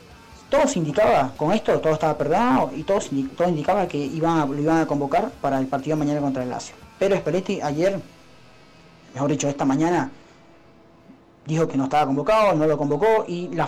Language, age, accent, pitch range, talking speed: English, 20-39, Argentinian, 140-180 Hz, 195 wpm